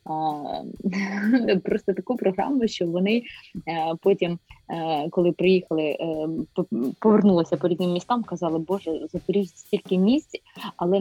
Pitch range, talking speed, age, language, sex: 165-195 Hz, 100 wpm, 20-39, Ukrainian, female